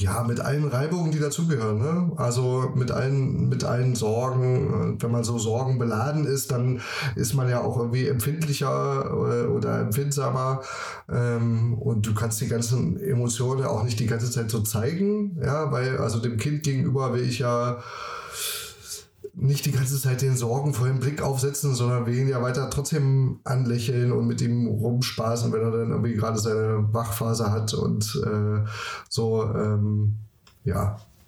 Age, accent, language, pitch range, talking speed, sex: 10-29, German, German, 110-135 Hz, 155 wpm, male